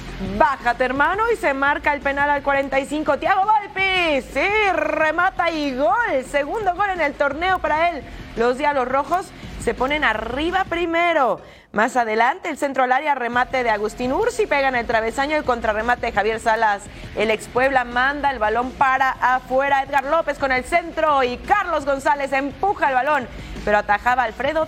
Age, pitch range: 30-49, 245-310 Hz